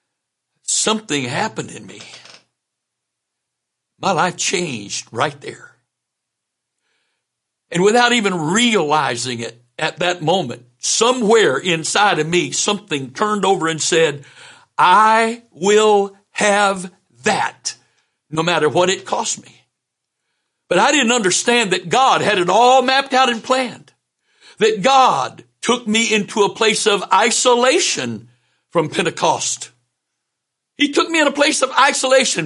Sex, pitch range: male, 155-235 Hz